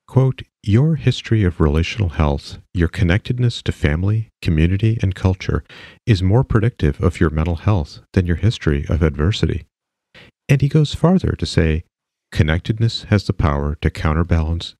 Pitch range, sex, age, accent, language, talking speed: 85-115 Hz, male, 40-59, American, English, 150 wpm